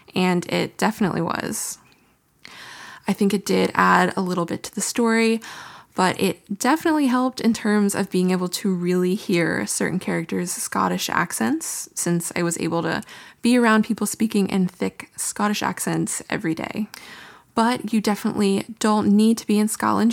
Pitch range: 185-225 Hz